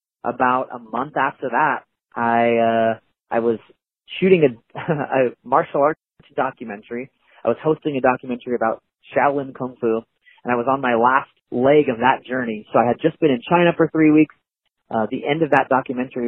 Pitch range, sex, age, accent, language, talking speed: 115-150 Hz, male, 30-49, American, English, 185 wpm